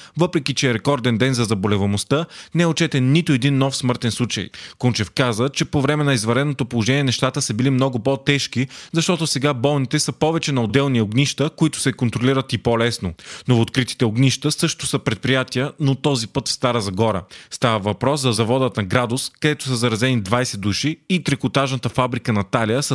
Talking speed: 185 wpm